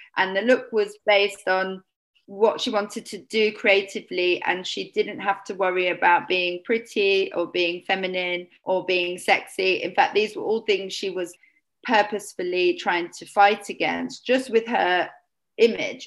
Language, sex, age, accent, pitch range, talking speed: English, female, 30-49, British, 185-255 Hz, 165 wpm